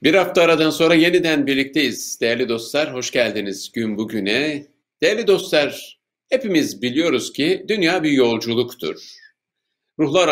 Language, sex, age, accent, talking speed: Turkish, male, 50-69, native, 120 wpm